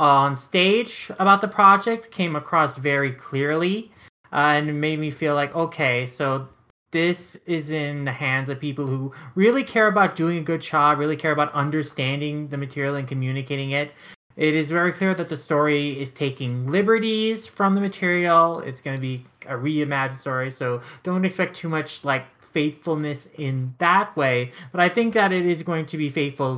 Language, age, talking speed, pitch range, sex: English, 30-49, 185 wpm, 135-165 Hz, male